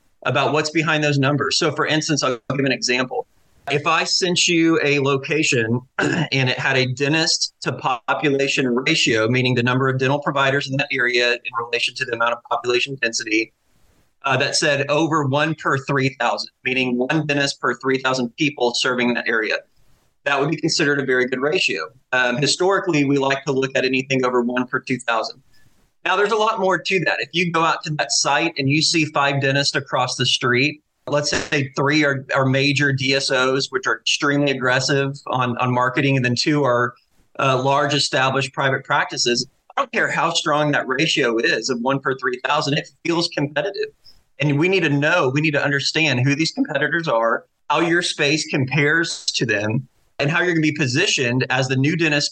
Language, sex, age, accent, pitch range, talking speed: English, male, 30-49, American, 125-150 Hz, 195 wpm